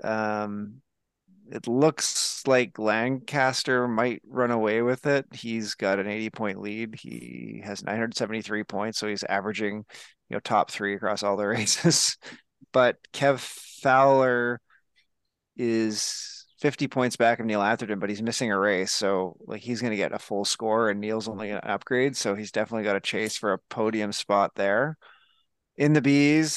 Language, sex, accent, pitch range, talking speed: English, male, American, 100-125 Hz, 165 wpm